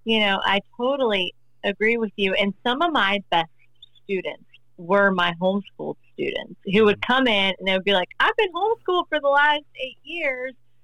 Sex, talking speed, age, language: female, 190 wpm, 30-49, English